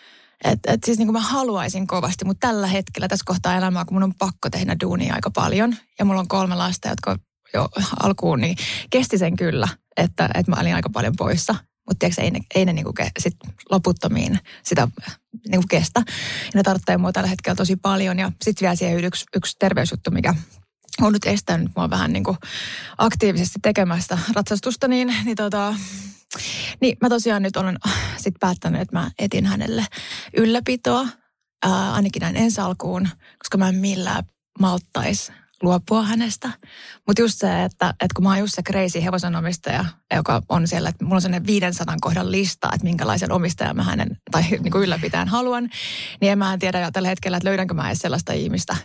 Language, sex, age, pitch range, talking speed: Finnish, female, 20-39, 175-205 Hz, 185 wpm